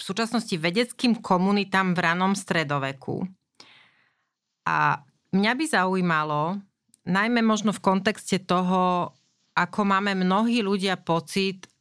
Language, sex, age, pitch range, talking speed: Slovak, female, 40-59, 170-200 Hz, 105 wpm